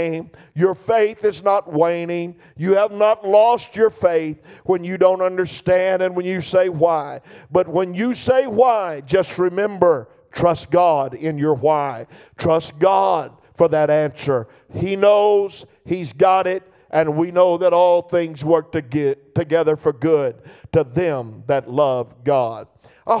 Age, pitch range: 50-69, 150-185 Hz